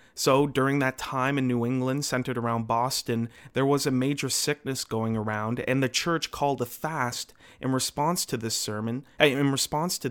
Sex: male